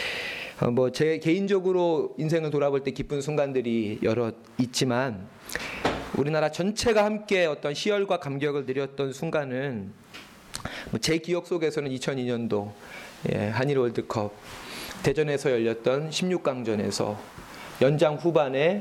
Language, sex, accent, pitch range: Korean, male, native, 115-160 Hz